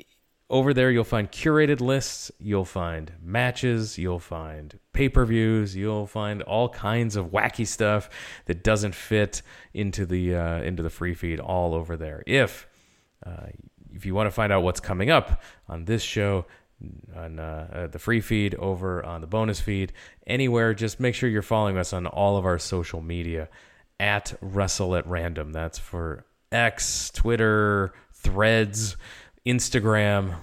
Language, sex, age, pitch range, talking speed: English, male, 30-49, 90-115 Hz, 155 wpm